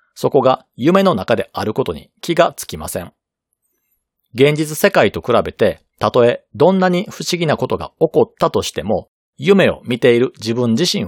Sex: male